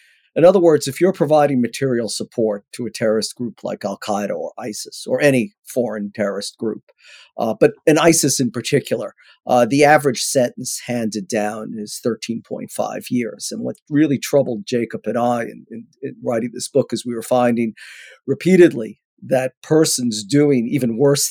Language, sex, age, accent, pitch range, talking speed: English, male, 50-69, American, 115-140 Hz, 170 wpm